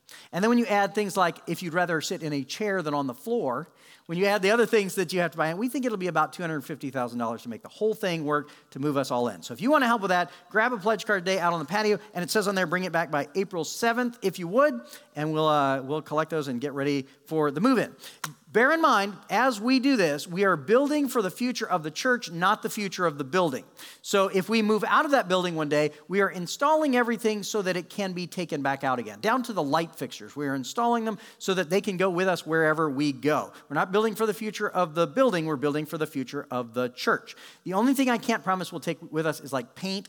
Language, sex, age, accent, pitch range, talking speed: English, male, 40-59, American, 150-220 Hz, 275 wpm